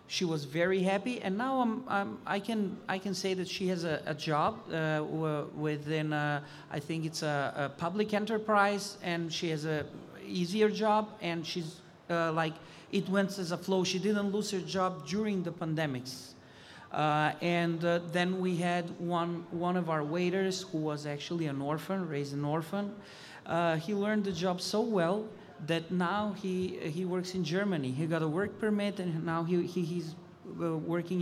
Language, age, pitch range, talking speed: English, 40-59, 155-190 Hz, 185 wpm